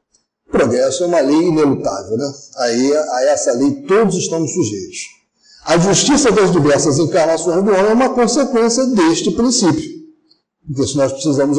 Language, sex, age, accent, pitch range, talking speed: Portuguese, male, 50-69, Brazilian, 170-280 Hz, 150 wpm